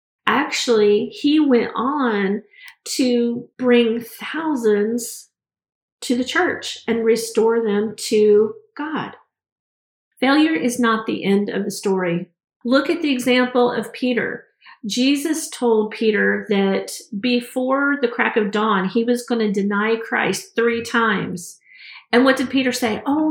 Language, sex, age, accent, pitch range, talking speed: English, female, 40-59, American, 210-255 Hz, 135 wpm